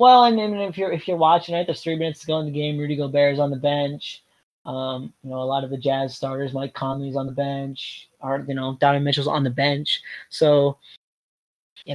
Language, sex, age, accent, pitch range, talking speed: English, male, 20-39, American, 140-165 Hz, 235 wpm